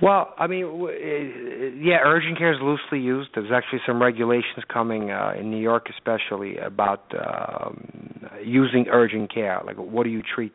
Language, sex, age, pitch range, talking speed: English, male, 50-69, 105-125 Hz, 170 wpm